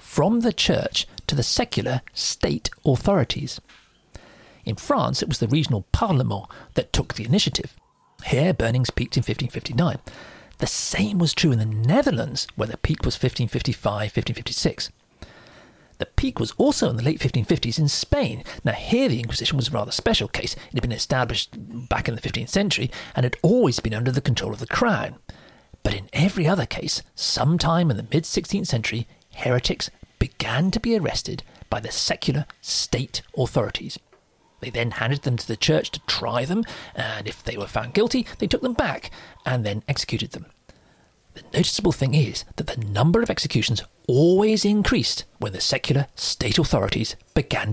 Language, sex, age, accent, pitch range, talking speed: English, male, 40-59, British, 115-155 Hz, 170 wpm